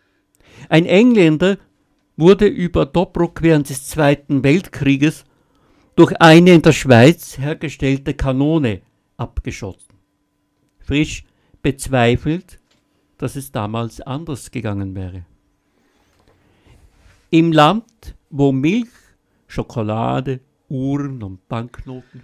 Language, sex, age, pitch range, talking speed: German, male, 60-79, 110-160 Hz, 90 wpm